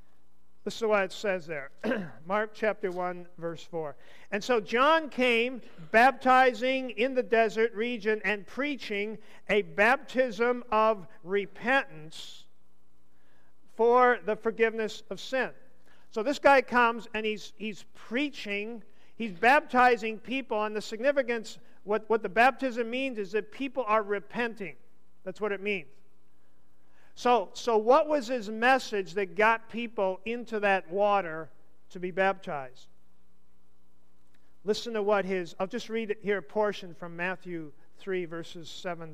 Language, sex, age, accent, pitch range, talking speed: English, male, 50-69, American, 165-235 Hz, 140 wpm